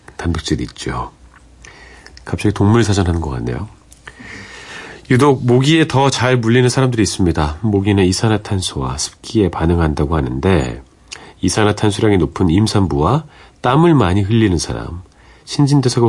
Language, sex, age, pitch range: Korean, male, 40-59, 75-115 Hz